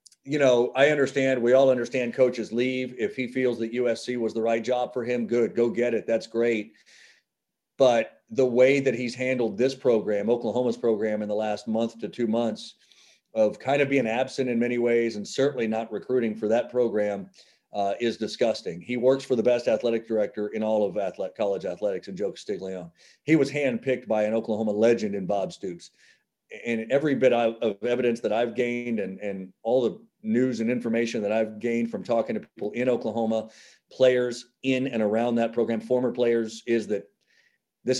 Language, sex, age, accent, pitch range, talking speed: English, male, 40-59, American, 110-130 Hz, 195 wpm